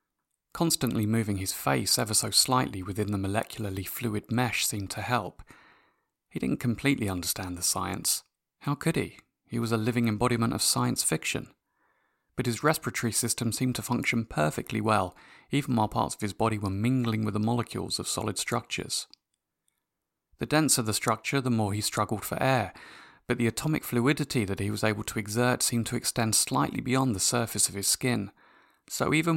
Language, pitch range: English, 105-125 Hz